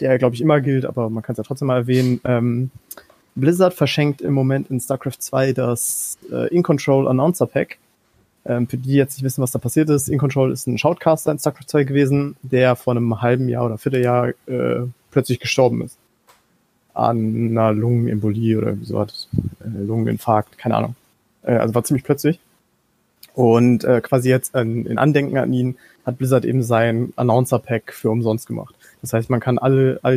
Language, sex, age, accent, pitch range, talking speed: German, male, 30-49, German, 120-135 Hz, 185 wpm